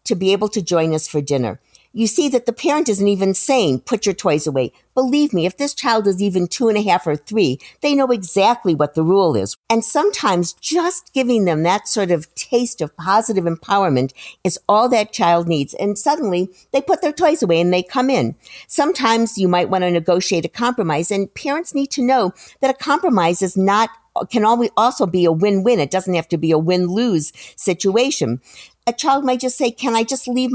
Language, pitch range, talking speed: English, 180-245 Hz, 210 wpm